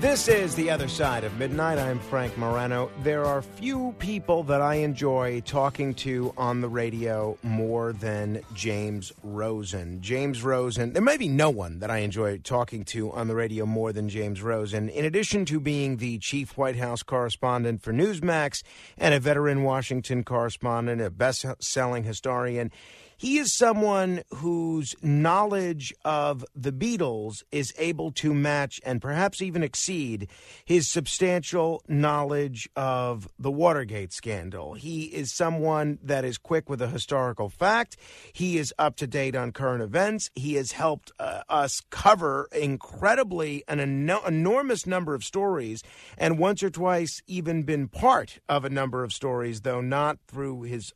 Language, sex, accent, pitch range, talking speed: English, male, American, 120-160 Hz, 160 wpm